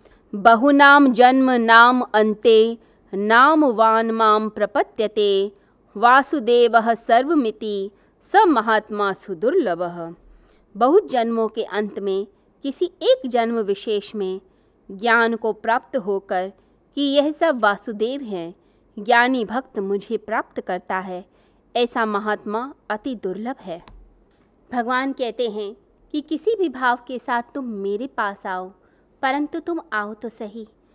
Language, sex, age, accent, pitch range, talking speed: Hindi, female, 20-39, native, 210-255 Hz, 115 wpm